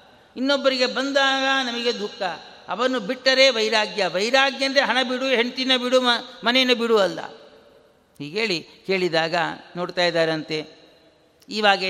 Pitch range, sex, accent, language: 200-260 Hz, male, native, Kannada